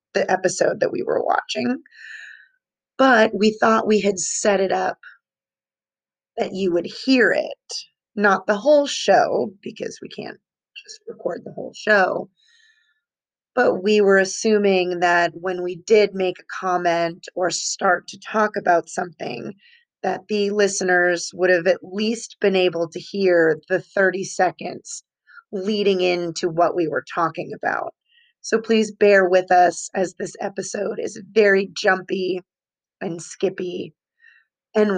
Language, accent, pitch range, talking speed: English, American, 185-240 Hz, 140 wpm